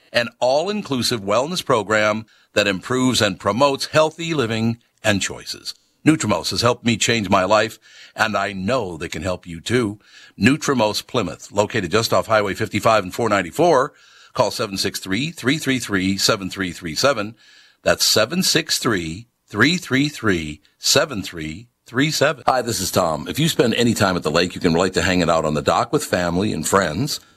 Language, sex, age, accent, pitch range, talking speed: English, male, 50-69, American, 95-135 Hz, 145 wpm